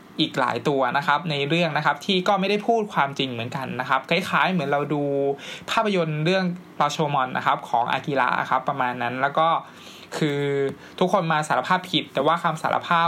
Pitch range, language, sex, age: 140-175 Hz, Thai, male, 20-39